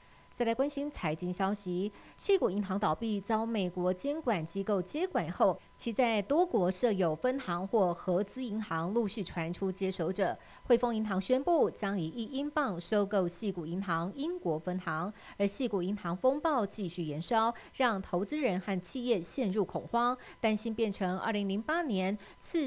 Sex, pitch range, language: female, 185-240 Hz, Chinese